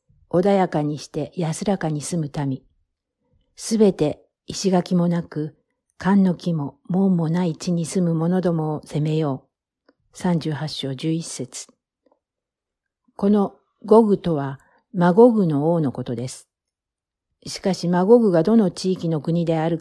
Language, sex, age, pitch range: Japanese, female, 50-69, 150-190 Hz